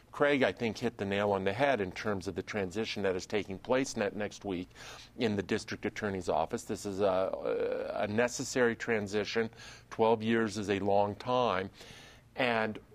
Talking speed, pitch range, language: 175 wpm, 100-120 Hz, English